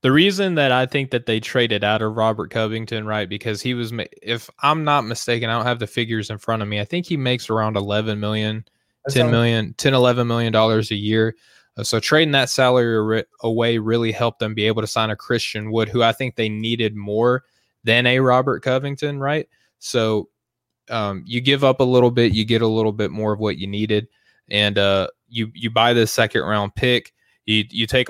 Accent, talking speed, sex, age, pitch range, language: American, 210 wpm, male, 20-39, 105-120 Hz, English